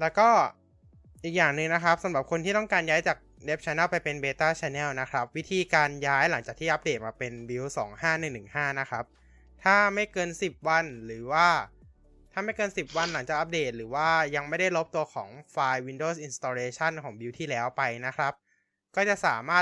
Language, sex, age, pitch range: Thai, male, 20-39, 125-170 Hz